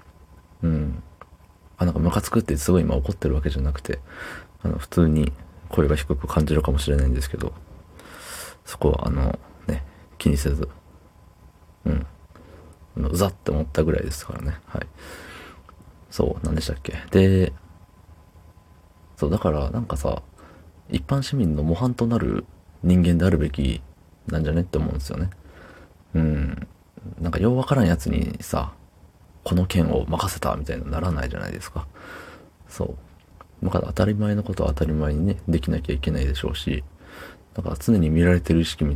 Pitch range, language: 75-90 Hz, Japanese